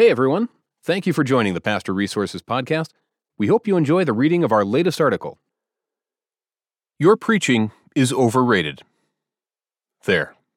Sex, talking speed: male, 140 wpm